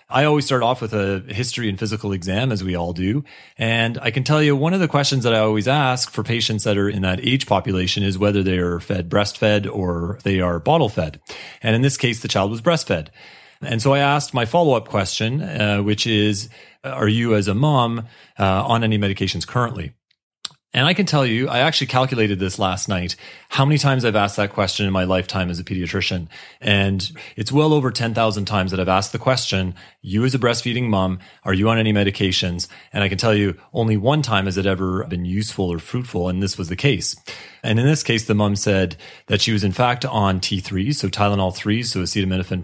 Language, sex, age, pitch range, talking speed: English, male, 30-49, 95-120 Hz, 220 wpm